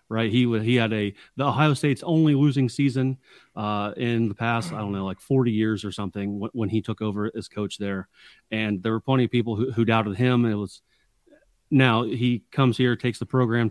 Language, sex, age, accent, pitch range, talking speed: English, male, 30-49, American, 105-125 Hz, 220 wpm